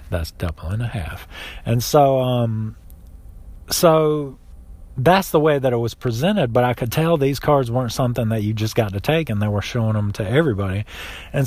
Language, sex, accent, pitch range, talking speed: English, male, American, 105-145 Hz, 200 wpm